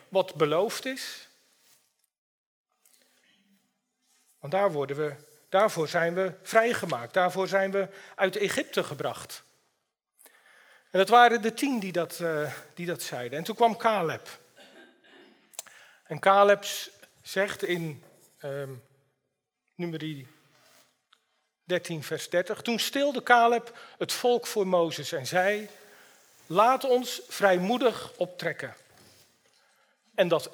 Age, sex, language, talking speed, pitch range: 40-59, male, Dutch, 110 wpm, 170-230 Hz